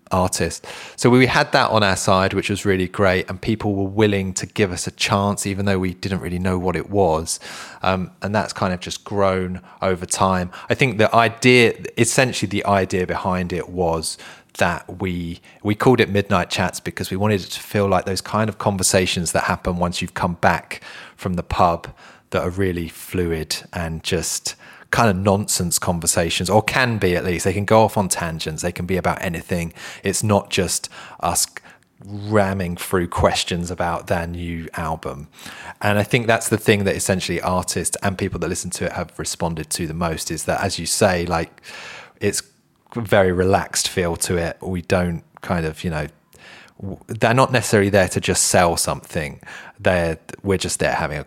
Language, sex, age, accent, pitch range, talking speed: English, male, 20-39, British, 85-100 Hz, 195 wpm